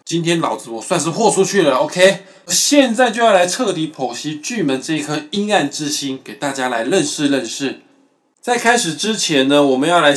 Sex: male